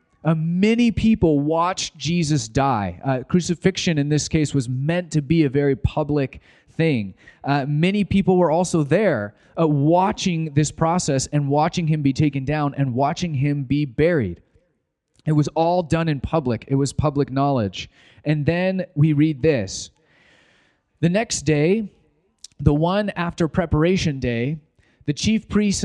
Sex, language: male, English